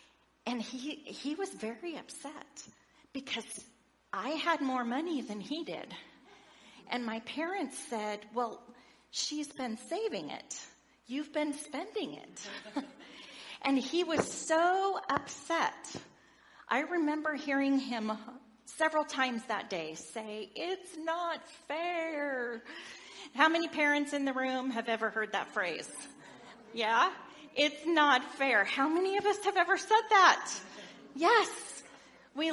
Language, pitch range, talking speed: English, 225-310 Hz, 125 wpm